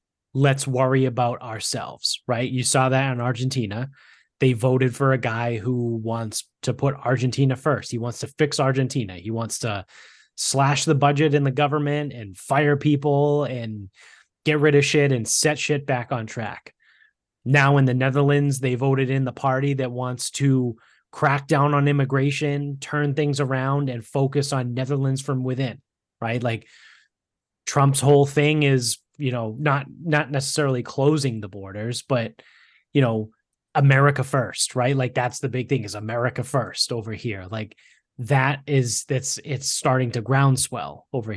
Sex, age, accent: male, 20-39, American